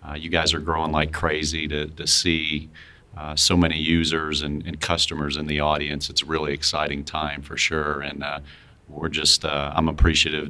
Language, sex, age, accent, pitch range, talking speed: English, male, 40-59, American, 75-85 Hz, 195 wpm